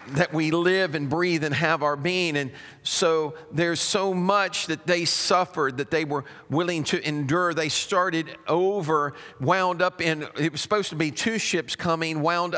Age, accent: 50-69, American